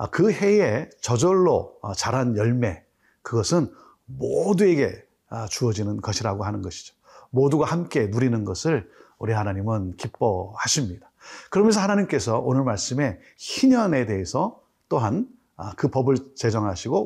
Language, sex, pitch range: Korean, male, 110-175 Hz